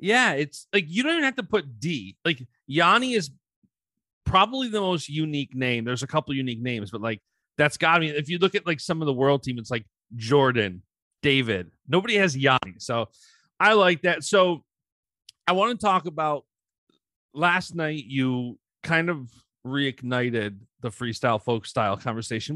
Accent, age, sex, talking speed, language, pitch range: American, 30-49, male, 175 wpm, English, 115-155 Hz